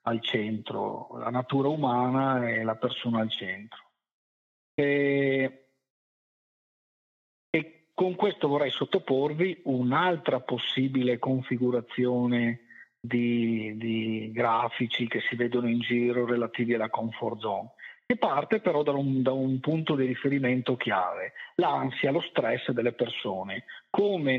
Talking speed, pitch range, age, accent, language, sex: 115 wpm, 120-155 Hz, 50-69, native, Italian, male